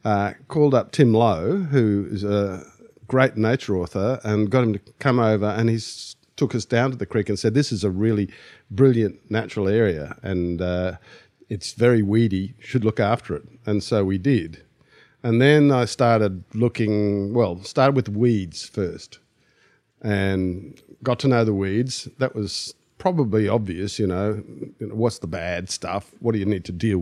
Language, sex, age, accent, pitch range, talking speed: English, male, 50-69, Australian, 100-125 Hz, 175 wpm